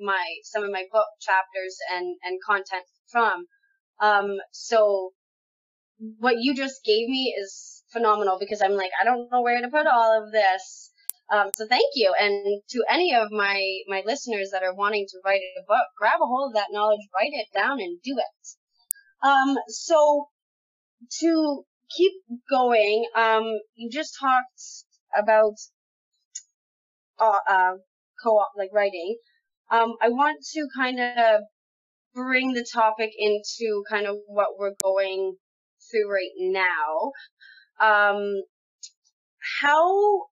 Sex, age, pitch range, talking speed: female, 20-39, 200-260 Hz, 145 wpm